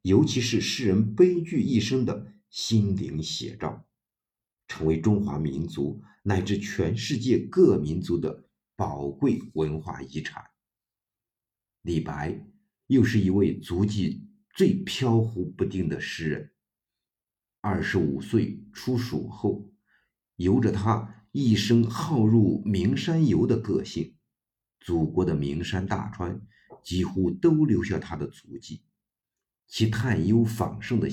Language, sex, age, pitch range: Chinese, male, 50-69, 85-115 Hz